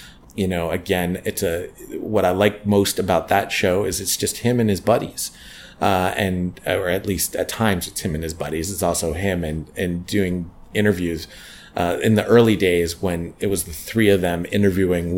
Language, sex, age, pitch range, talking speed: English, male, 30-49, 85-100 Hz, 200 wpm